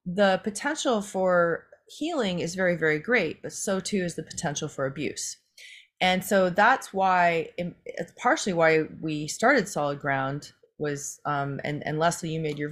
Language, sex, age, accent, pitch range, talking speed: English, female, 30-49, American, 155-190 Hz, 165 wpm